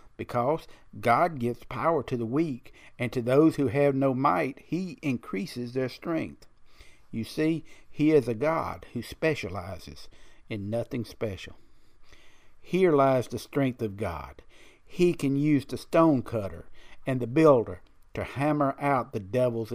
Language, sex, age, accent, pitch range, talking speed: English, male, 50-69, American, 110-155 Hz, 150 wpm